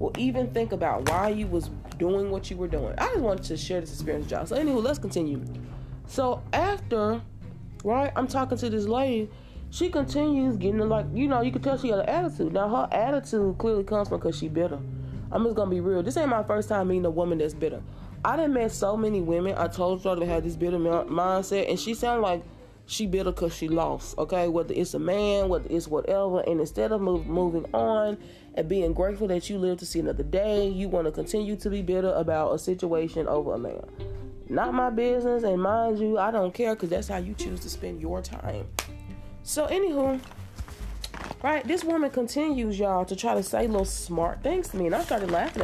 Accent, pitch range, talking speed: American, 165-230 Hz, 225 wpm